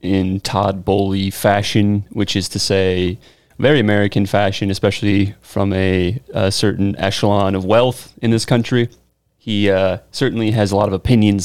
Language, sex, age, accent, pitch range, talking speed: English, male, 30-49, American, 100-135 Hz, 155 wpm